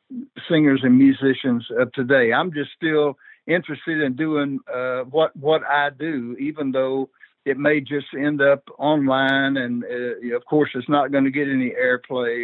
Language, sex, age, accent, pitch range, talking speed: English, male, 60-79, American, 130-165 Hz, 170 wpm